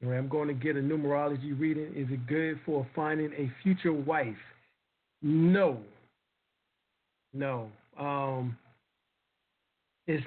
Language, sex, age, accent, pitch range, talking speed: English, male, 50-69, American, 140-175 Hz, 110 wpm